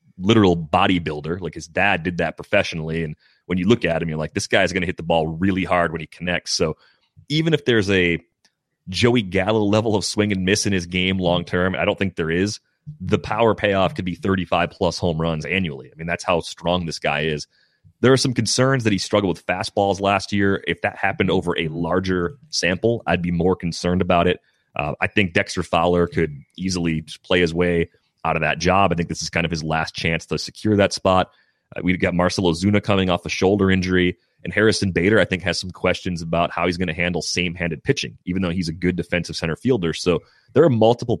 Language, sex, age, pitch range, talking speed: English, male, 30-49, 85-100 Hz, 230 wpm